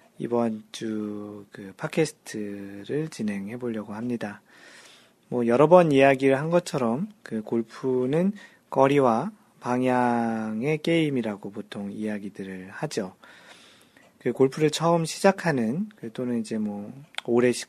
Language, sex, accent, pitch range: Korean, male, native, 115-155 Hz